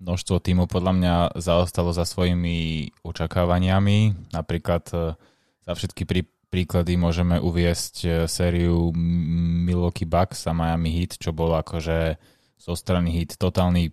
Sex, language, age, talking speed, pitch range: male, Slovak, 20-39, 110 wpm, 85-95 Hz